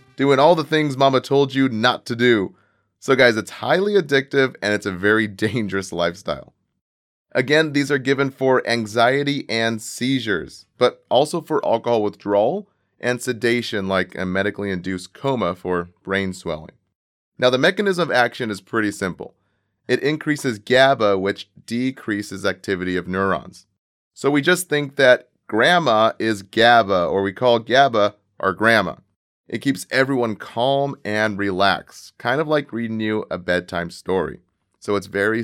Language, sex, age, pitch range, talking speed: English, male, 30-49, 100-130 Hz, 155 wpm